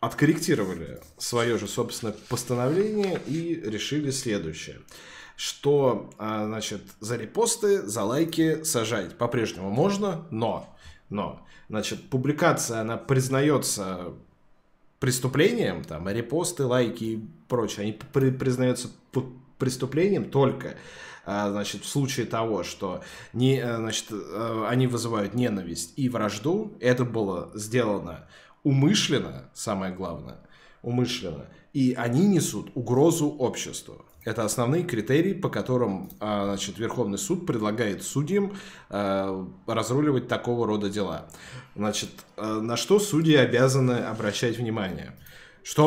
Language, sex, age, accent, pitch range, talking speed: Russian, male, 20-39, native, 110-145 Hz, 100 wpm